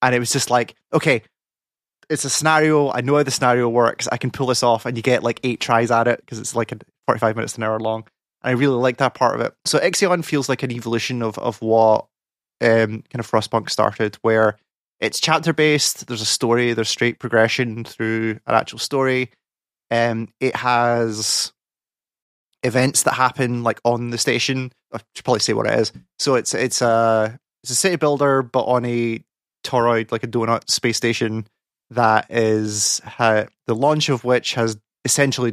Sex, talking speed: male, 195 wpm